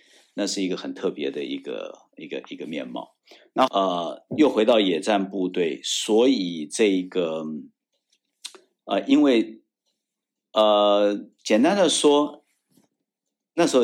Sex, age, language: male, 50-69, Chinese